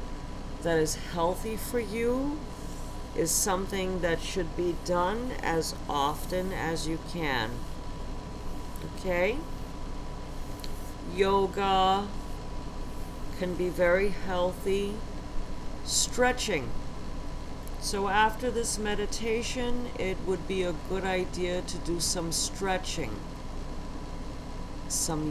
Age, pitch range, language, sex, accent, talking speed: 50-69, 160-200 Hz, English, female, American, 90 wpm